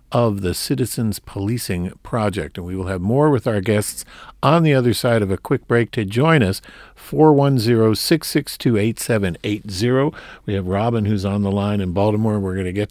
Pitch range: 90-115 Hz